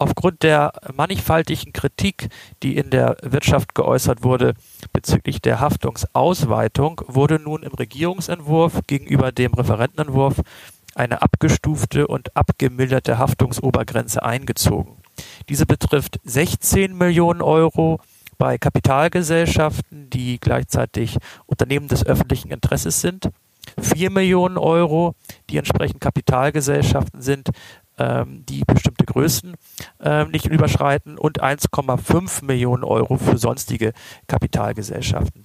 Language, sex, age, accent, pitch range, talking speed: German, male, 50-69, German, 125-155 Hz, 100 wpm